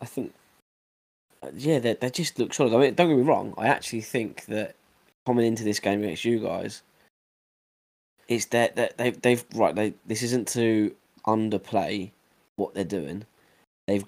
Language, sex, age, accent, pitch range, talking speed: English, male, 10-29, British, 100-115 Hz, 170 wpm